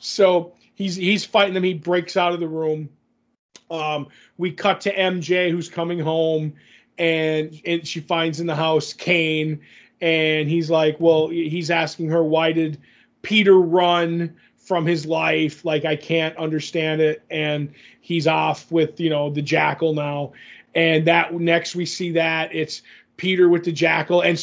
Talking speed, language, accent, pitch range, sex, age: 165 wpm, English, American, 160-180 Hz, male, 30-49